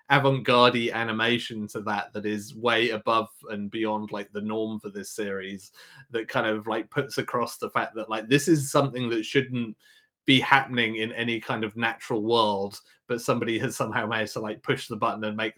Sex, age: male, 30-49